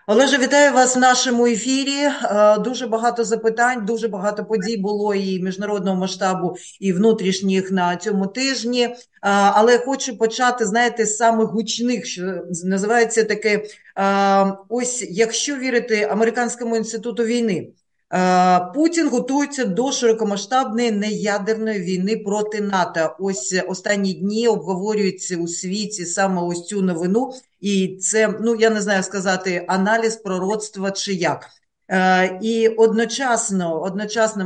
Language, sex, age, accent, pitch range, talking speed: Russian, female, 40-59, native, 185-225 Hz, 120 wpm